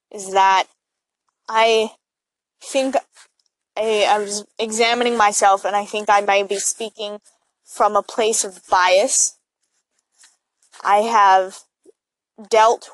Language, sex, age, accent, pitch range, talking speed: English, female, 10-29, American, 200-230 Hz, 110 wpm